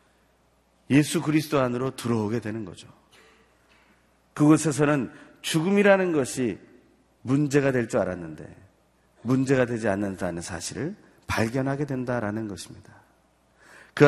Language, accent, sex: Korean, native, male